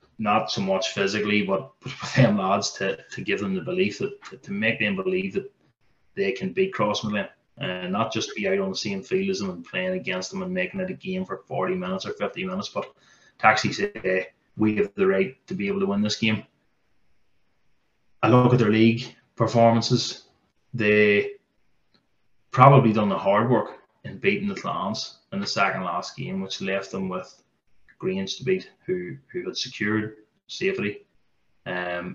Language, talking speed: English, 185 wpm